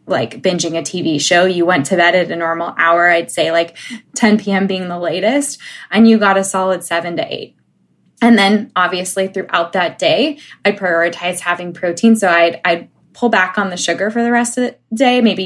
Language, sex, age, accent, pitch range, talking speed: English, female, 20-39, American, 175-225 Hz, 210 wpm